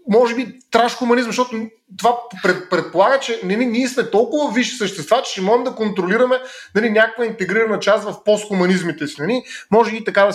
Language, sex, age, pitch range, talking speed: Bulgarian, male, 30-49, 175-235 Hz, 175 wpm